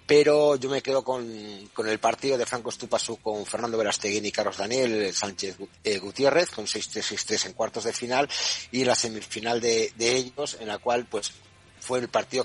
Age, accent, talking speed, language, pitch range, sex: 40-59, Spanish, 190 wpm, Spanish, 105-125 Hz, male